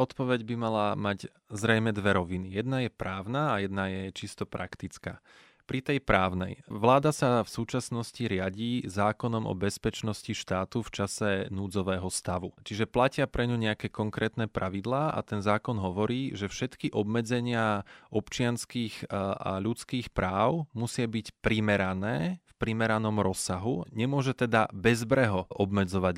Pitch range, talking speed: 100-120 Hz, 135 wpm